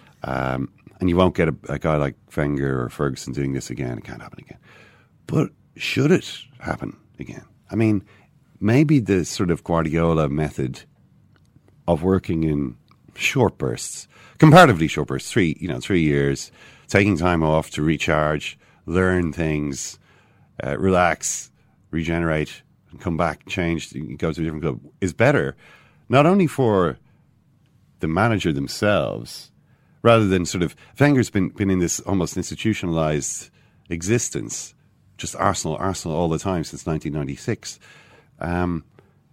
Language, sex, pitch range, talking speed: English, male, 75-110 Hz, 135 wpm